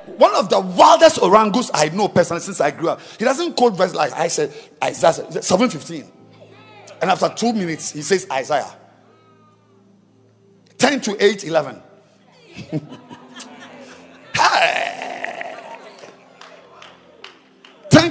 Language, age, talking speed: English, 50-69, 115 wpm